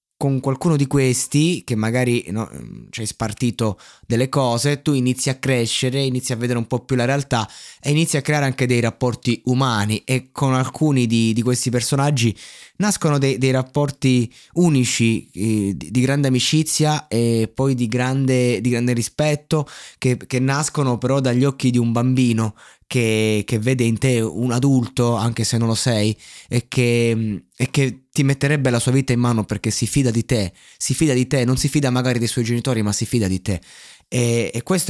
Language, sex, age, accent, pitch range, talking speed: Italian, male, 20-39, native, 110-135 Hz, 185 wpm